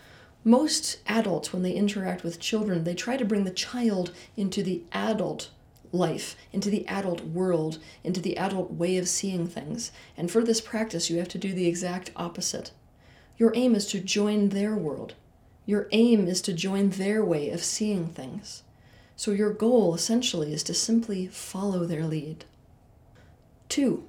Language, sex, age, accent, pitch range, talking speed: English, female, 30-49, American, 170-210 Hz, 165 wpm